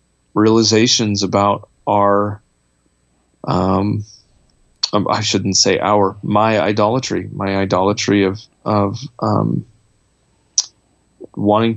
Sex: male